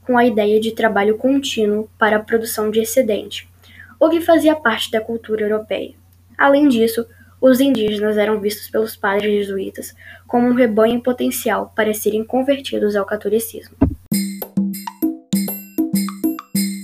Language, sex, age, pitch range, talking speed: Portuguese, female, 10-29, 200-255 Hz, 130 wpm